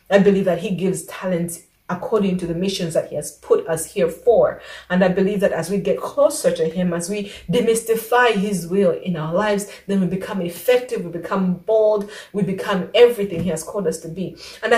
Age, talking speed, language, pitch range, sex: 30-49, 210 wpm, English, 175-230 Hz, female